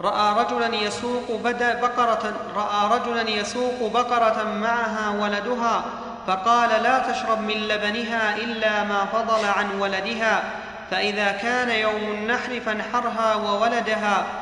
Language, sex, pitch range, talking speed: Arabic, male, 205-230 Hz, 90 wpm